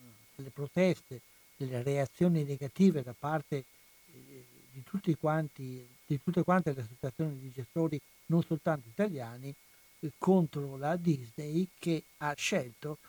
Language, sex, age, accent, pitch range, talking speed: Italian, male, 60-79, native, 130-160 Hz, 125 wpm